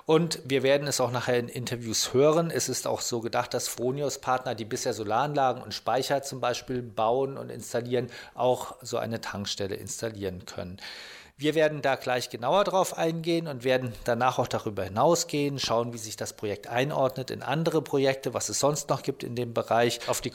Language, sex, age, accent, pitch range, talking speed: German, male, 40-59, German, 115-135 Hz, 190 wpm